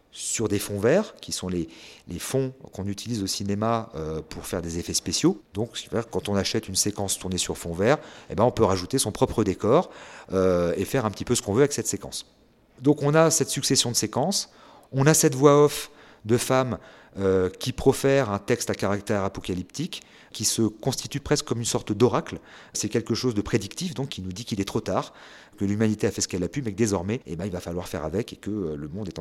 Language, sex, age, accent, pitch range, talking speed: French, male, 40-59, French, 100-135 Hz, 230 wpm